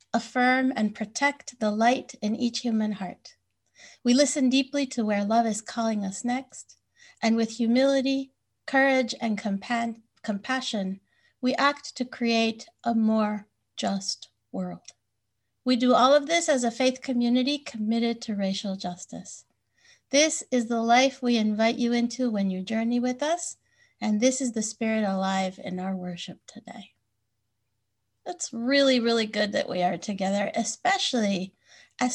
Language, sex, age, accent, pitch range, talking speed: English, female, 60-79, American, 200-255 Hz, 145 wpm